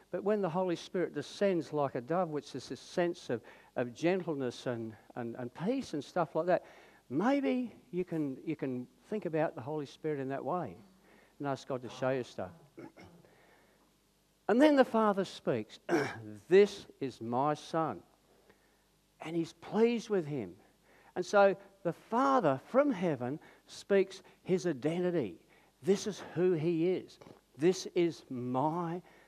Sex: male